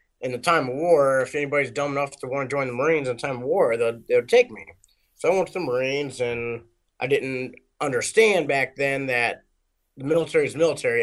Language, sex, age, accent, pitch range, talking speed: English, male, 30-49, American, 125-160 Hz, 225 wpm